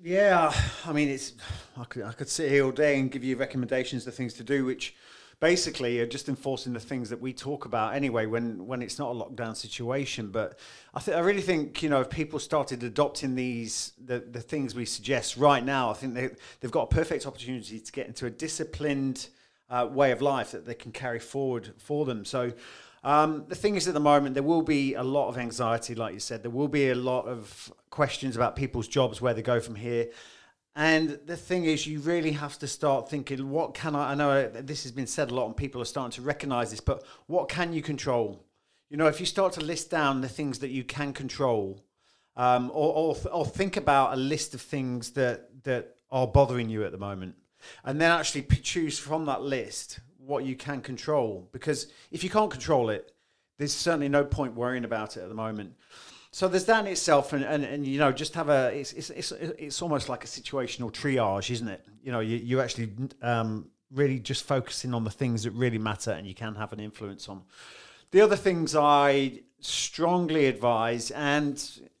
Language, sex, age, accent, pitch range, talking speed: English, male, 30-49, British, 120-145 Hz, 220 wpm